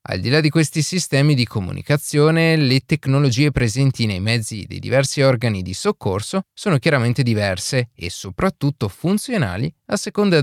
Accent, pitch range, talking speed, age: native, 105-155 Hz, 150 wpm, 30-49